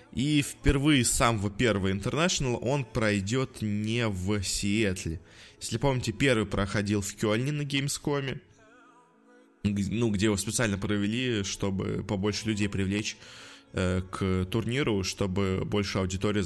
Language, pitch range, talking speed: Russian, 100-125 Hz, 120 wpm